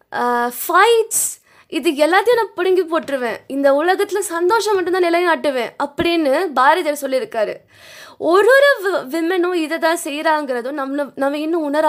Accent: Indian